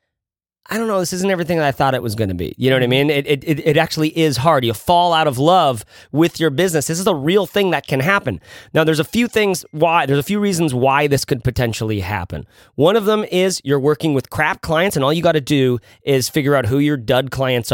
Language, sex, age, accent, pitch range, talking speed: English, male, 30-49, American, 110-150 Hz, 265 wpm